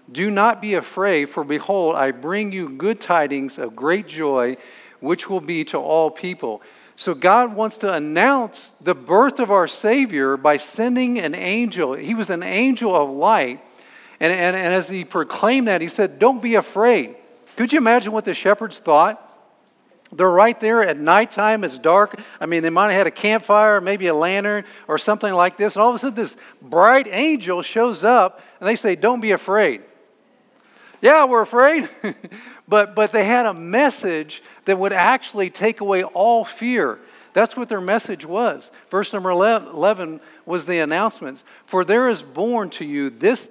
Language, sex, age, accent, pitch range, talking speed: English, male, 50-69, American, 175-230 Hz, 180 wpm